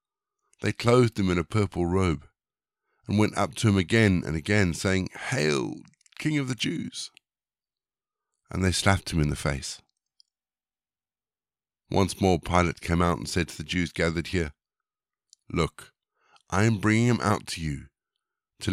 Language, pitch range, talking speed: English, 85-110 Hz, 155 wpm